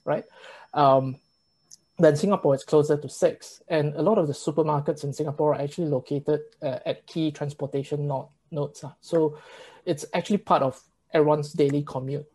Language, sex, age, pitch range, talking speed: English, male, 20-39, 145-170 Hz, 160 wpm